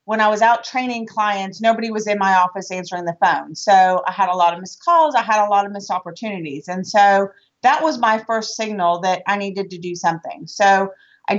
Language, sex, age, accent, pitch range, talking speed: English, female, 30-49, American, 195-245 Hz, 230 wpm